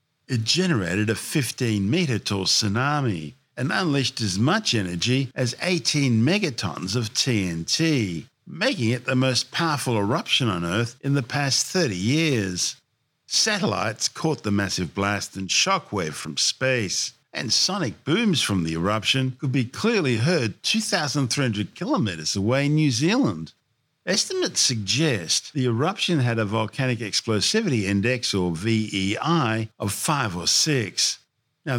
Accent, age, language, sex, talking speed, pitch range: Australian, 50-69, English, male, 130 wpm, 100-140 Hz